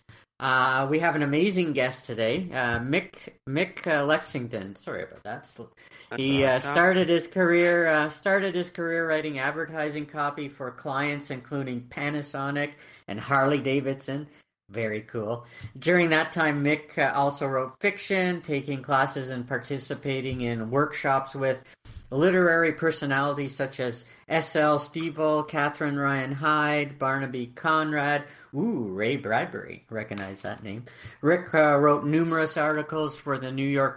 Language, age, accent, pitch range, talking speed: English, 50-69, American, 125-155 Hz, 135 wpm